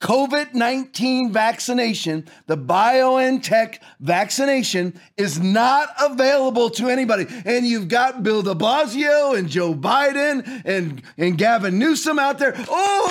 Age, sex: 40-59, male